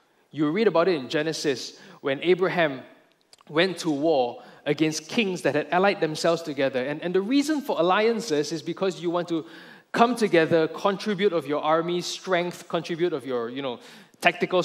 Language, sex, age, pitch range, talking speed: English, male, 20-39, 135-185 Hz, 170 wpm